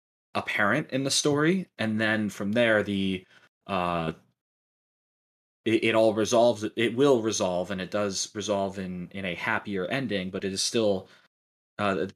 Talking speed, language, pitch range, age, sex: 155 wpm, English, 95-115 Hz, 20-39, male